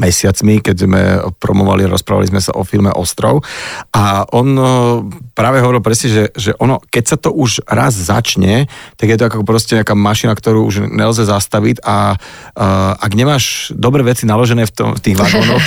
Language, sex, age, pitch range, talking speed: Slovak, male, 40-59, 100-115 Hz, 180 wpm